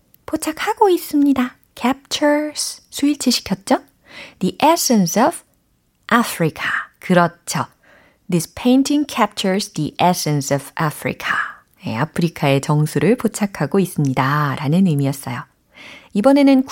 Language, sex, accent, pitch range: Korean, female, native, 160-270 Hz